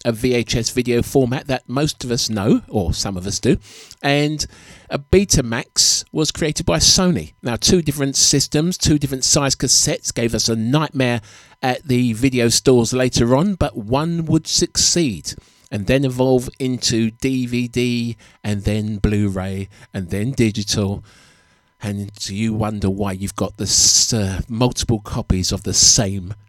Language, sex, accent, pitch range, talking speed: English, male, British, 105-130 Hz, 150 wpm